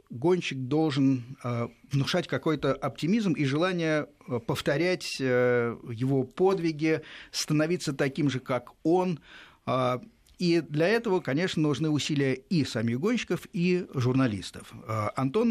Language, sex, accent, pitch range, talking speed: Russian, male, native, 125-175 Hz, 120 wpm